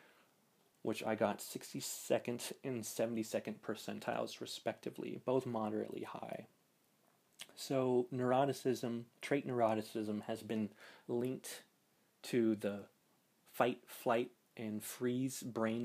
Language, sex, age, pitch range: English, male, 30-49, 110-120 Hz